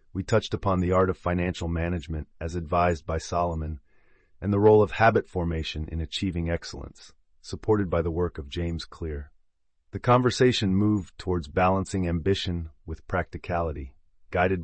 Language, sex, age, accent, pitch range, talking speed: English, male, 30-49, American, 80-95 Hz, 150 wpm